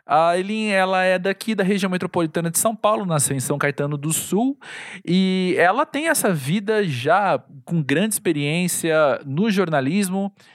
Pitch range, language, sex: 130-175 Hz, Portuguese, male